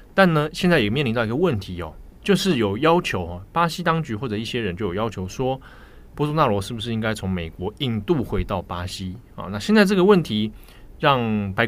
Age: 20-39